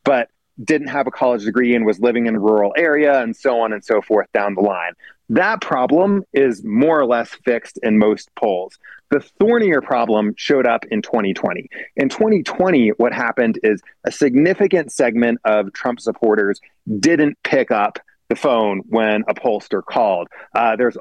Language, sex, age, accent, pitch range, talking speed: English, male, 30-49, American, 110-145 Hz, 175 wpm